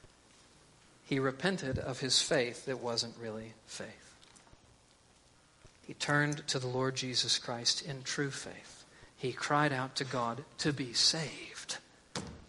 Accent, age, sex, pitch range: American, 50-69, male, 110-180 Hz